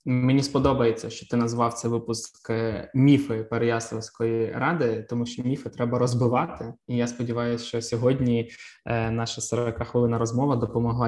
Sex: male